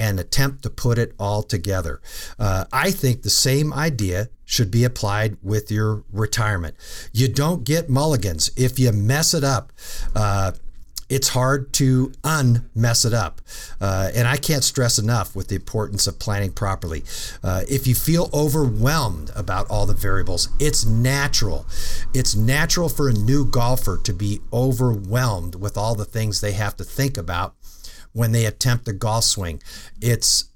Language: English